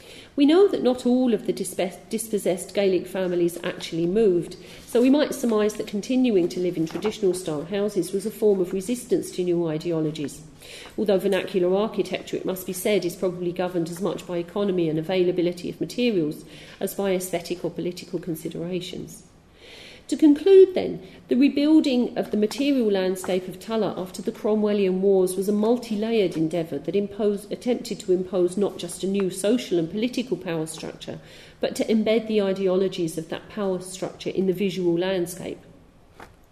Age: 40-59